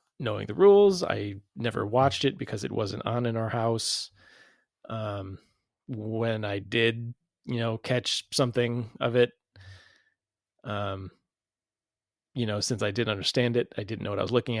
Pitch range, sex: 105-125 Hz, male